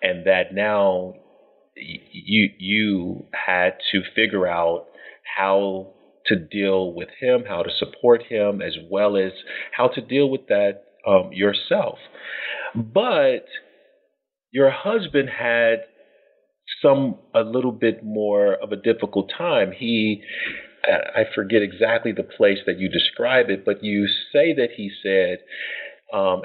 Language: English